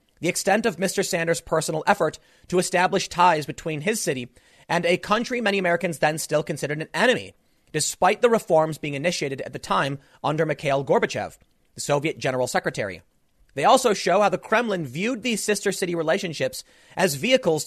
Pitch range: 145-205 Hz